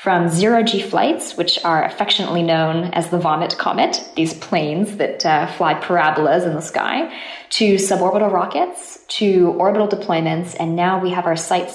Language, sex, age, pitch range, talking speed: English, female, 20-39, 160-205 Hz, 165 wpm